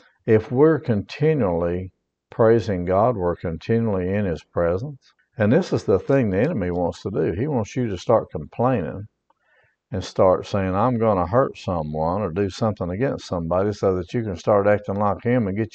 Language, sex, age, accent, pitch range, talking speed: English, male, 60-79, American, 100-130 Hz, 185 wpm